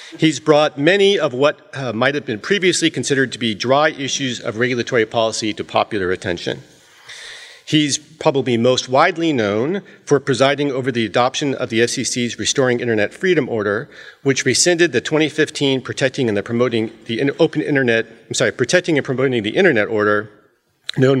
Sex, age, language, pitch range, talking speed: male, 40-59, English, 120-155 Hz, 165 wpm